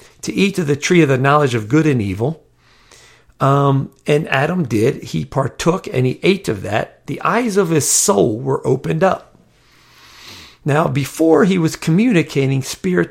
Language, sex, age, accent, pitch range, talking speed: English, male, 50-69, American, 125-170 Hz, 170 wpm